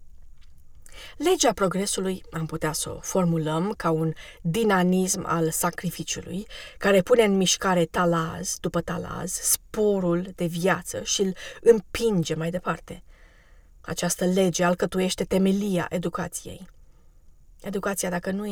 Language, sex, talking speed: Romanian, female, 115 wpm